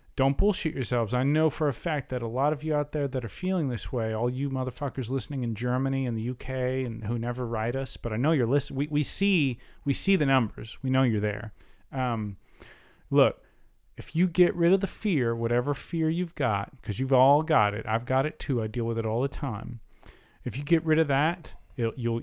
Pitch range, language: 125-170 Hz, English